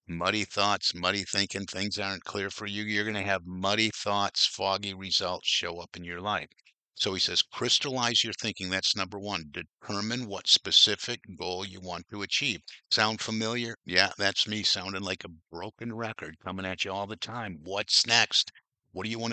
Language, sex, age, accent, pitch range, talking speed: English, male, 50-69, American, 95-115 Hz, 190 wpm